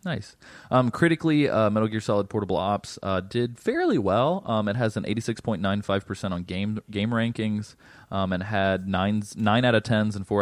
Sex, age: male, 20-39